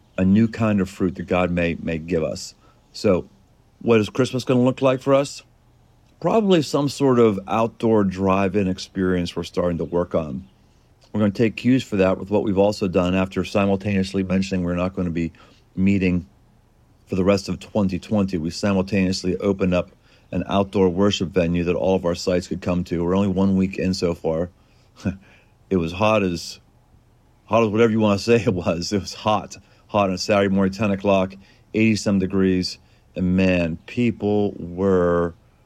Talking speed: 190 wpm